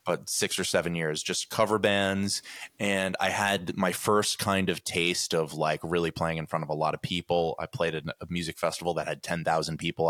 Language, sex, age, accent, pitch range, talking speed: English, male, 20-39, American, 85-100 Hz, 220 wpm